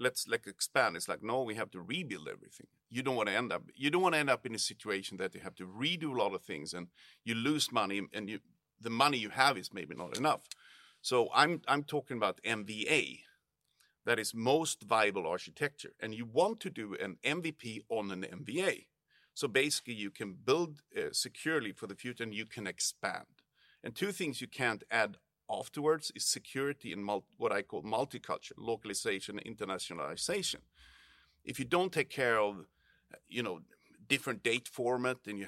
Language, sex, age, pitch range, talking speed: Swedish, male, 50-69, 105-140 Hz, 190 wpm